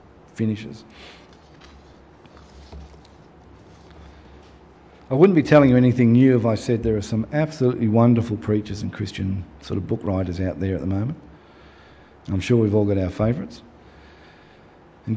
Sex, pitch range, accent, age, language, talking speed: male, 90-120 Hz, Australian, 40-59, English, 140 wpm